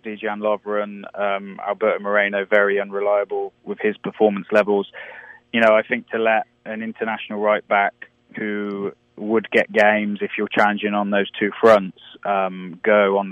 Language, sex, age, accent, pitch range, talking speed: English, male, 20-39, British, 100-115 Hz, 155 wpm